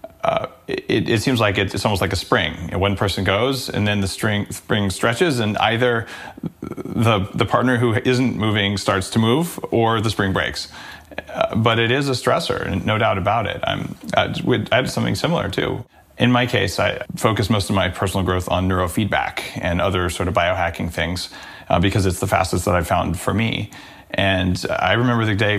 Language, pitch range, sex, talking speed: English, 95-120 Hz, male, 195 wpm